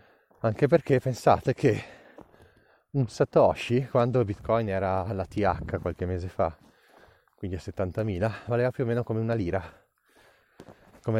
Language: Italian